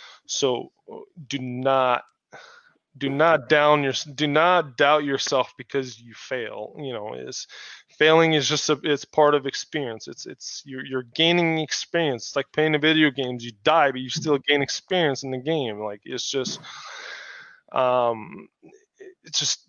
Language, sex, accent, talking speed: English, male, American, 160 wpm